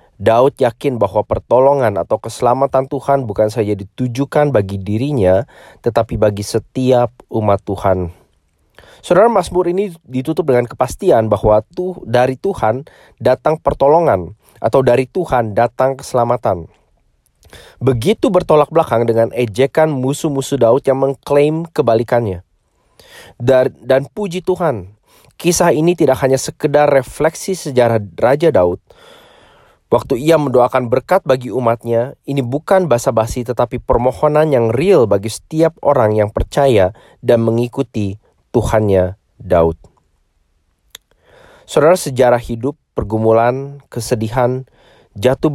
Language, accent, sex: English, Indonesian, male